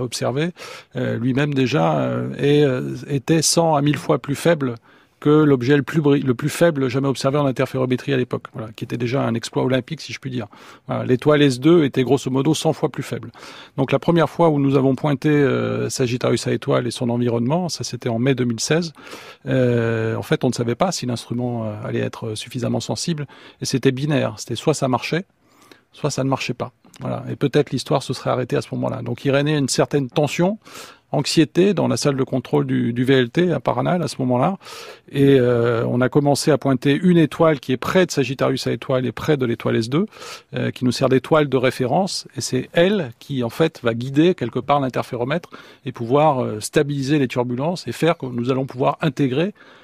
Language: French